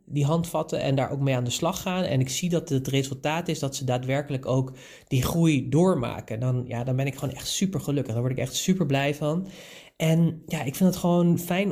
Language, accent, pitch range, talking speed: Dutch, Dutch, 130-160 Hz, 240 wpm